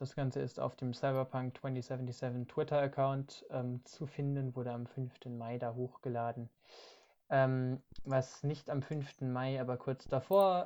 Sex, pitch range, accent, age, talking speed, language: male, 120-135 Hz, German, 20-39, 145 wpm, German